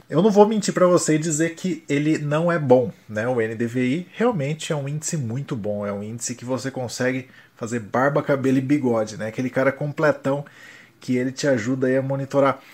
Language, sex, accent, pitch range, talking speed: Portuguese, male, Brazilian, 120-145 Hz, 205 wpm